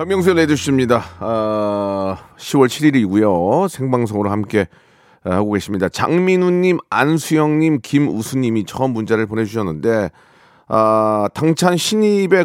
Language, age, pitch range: Korean, 40-59, 110-150 Hz